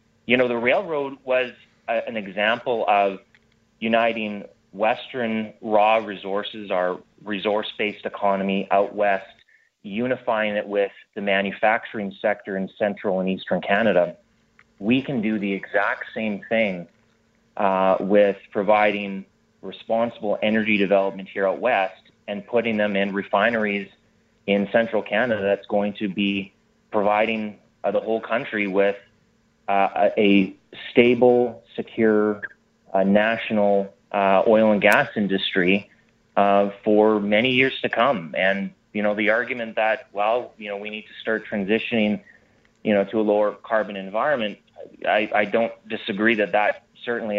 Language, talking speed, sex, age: English, 135 wpm, male, 30-49